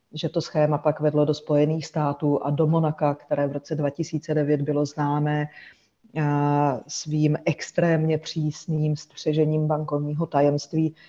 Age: 30-49